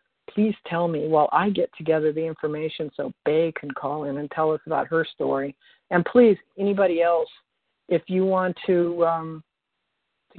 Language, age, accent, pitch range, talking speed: English, 50-69, American, 160-205 Hz, 175 wpm